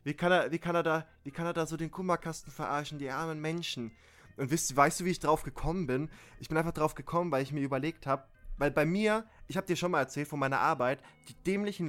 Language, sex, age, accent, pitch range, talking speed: German, male, 20-39, German, 125-175 Hz, 255 wpm